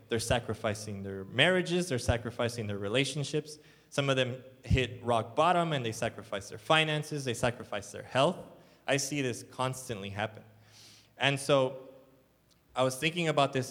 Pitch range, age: 110-140 Hz, 20-39